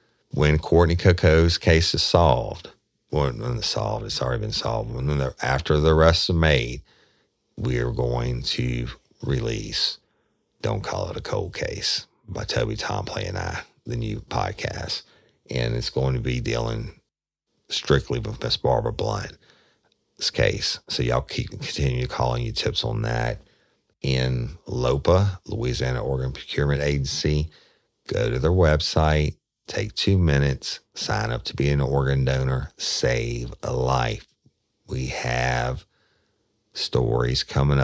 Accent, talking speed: American, 135 wpm